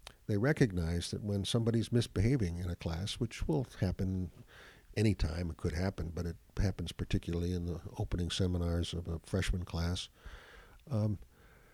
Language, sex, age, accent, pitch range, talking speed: English, male, 60-79, American, 85-110 Hz, 150 wpm